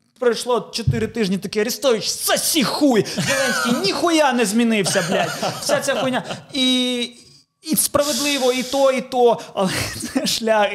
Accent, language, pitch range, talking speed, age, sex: native, Ukrainian, 175-210 Hz, 140 wpm, 20-39, male